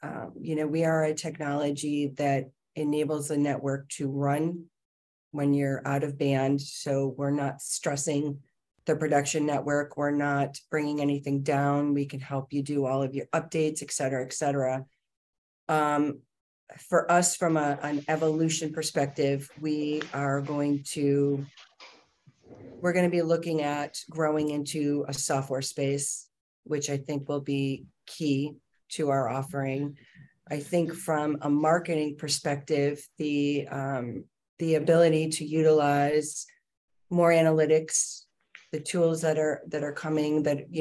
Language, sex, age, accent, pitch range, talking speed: English, female, 40-59, American, 140-155 Hz, 145 wpm